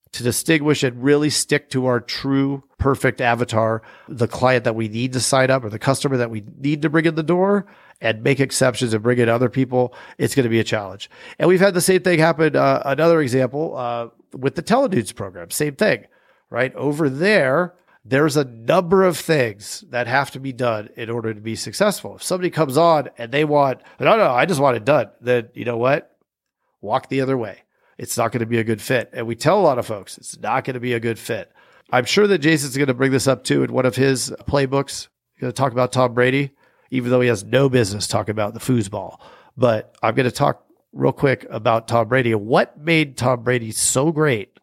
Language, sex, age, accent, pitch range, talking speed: English, male, 40-59, American, 115-140 Hz, 230 wpm